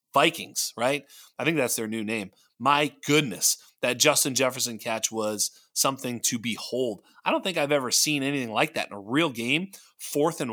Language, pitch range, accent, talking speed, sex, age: English, 115-150 Hz, American, 190 wpm, male, 30-49